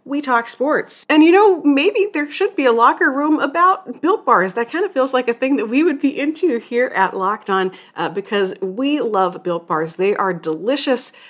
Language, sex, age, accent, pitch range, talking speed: English, female, 30-49, American, 190-265 Hz, 220 wpm